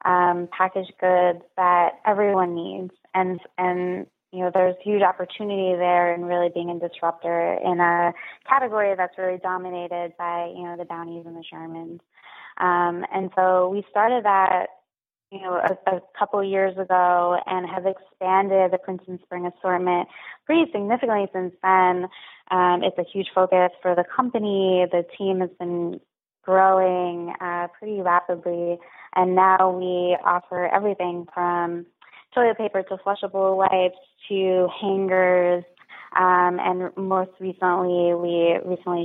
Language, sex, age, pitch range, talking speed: English, female, 20-39, 175-190 Hz, 140 wpm